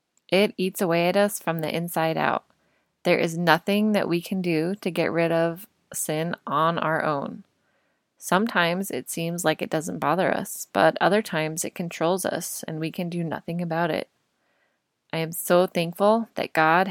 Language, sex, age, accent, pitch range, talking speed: English, female, 20-39, American, 160-190 Hz, 180 wpm